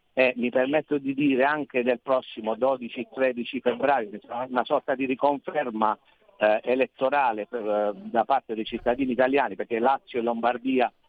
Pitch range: 115-140 Hz